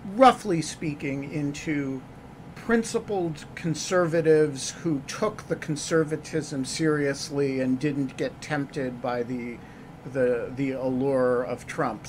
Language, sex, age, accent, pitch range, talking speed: English, male, 50-69, American, 135-160 Hz, 105 wpm